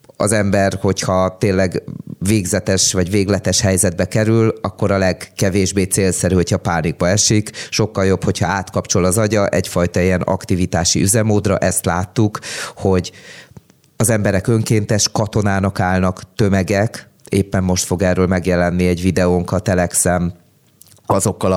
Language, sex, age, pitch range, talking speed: Hungarian, male, 30-49, 90-105 Hz, 120 wpm